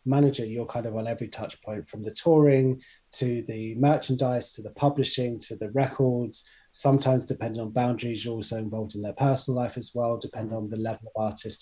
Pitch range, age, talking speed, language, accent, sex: 110-130 Hz, 20-39, 200 wpm, English, British, male